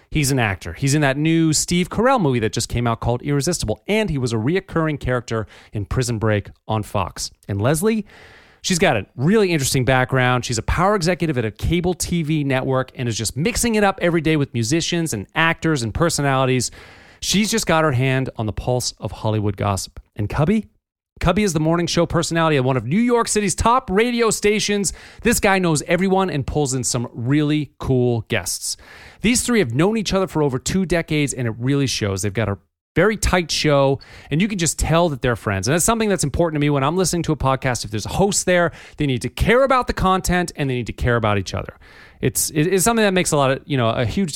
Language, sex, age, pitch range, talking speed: English, male, 30-49, 120-180 Hz, 230 wpm